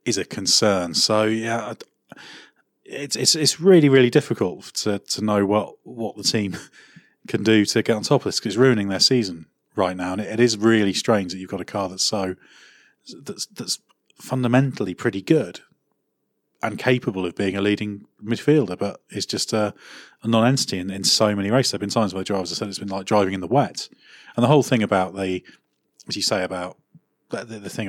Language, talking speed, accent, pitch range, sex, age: English, 205 wpm, British, 95-115 Hz, male, 30-49